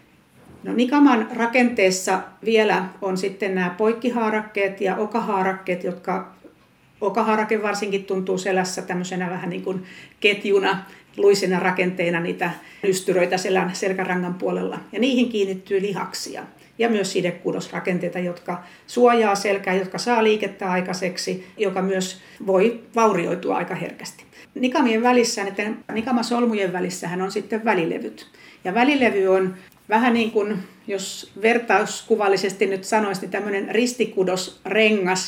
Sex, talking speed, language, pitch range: female, 110 wpm, Finnish, 185-220 Hz